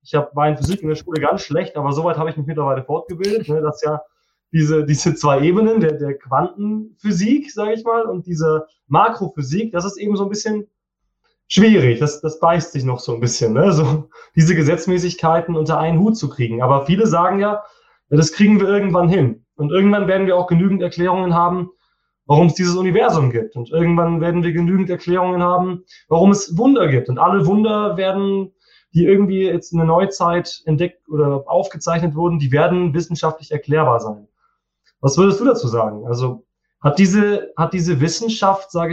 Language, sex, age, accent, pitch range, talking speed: German, male, 20-39, German, 150-185 Hz, 185 wpm